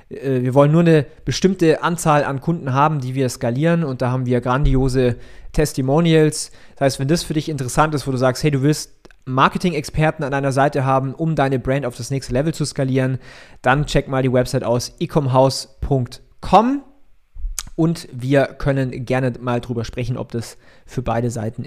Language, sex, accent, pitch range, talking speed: German, male, German, 130-160 Hz, 180 wpm